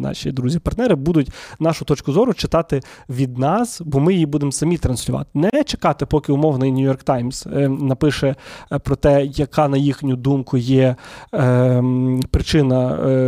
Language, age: Ukrainian, 20-39